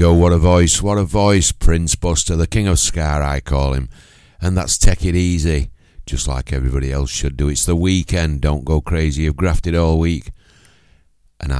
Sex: male